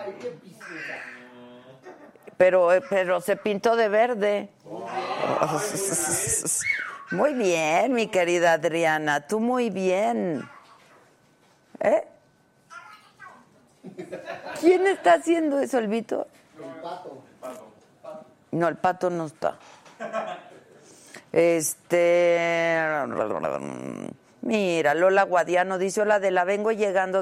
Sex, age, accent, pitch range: female, 50-69, Mexican, 165-235 Hz